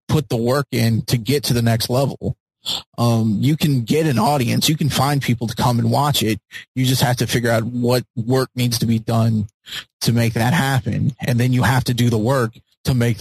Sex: male